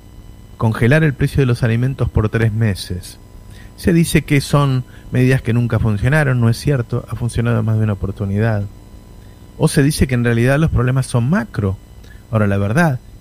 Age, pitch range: 30-49, 100-120 Hz